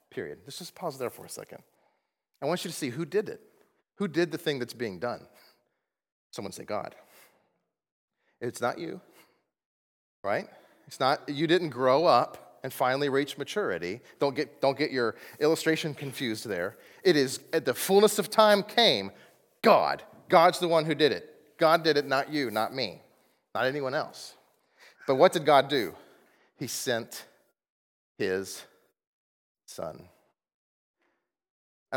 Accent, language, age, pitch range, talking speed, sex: American, English, 30-49, 125-175 Hz, 155 wpm, male